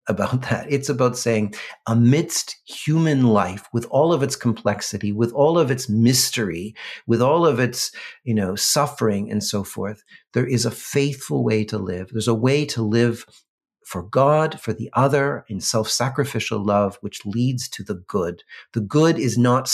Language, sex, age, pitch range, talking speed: English, male, 40-59, 110-140 Hz, 175 wpm